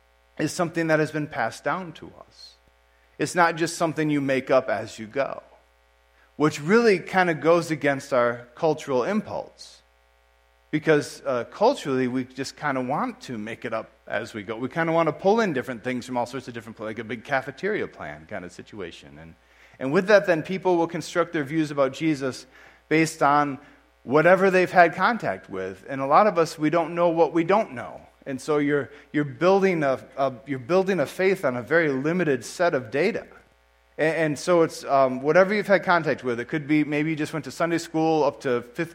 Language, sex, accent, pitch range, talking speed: English, male, American, 125-165 Hz, 215 wpm